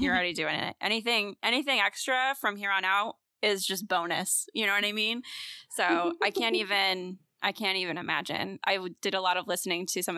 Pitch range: 180-220 Hz